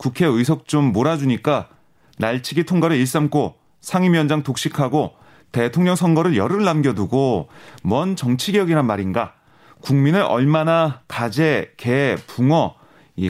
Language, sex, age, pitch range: Korean, male, 30-49, 125-170 Hz